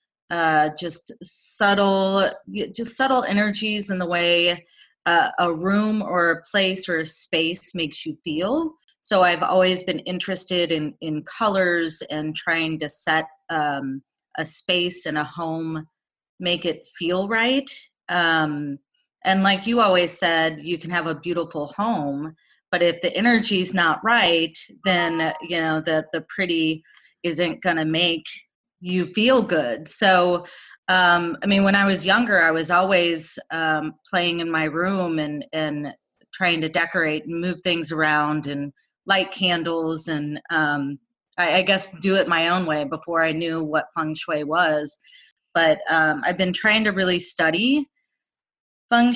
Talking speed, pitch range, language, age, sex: 155 wpm, 160-195 Hz, English, 30-49, female